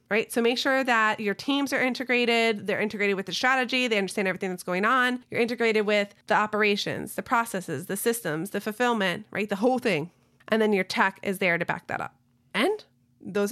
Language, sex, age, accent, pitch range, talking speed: English, female, 30-49, American, 190-230 Hz, 210 wpm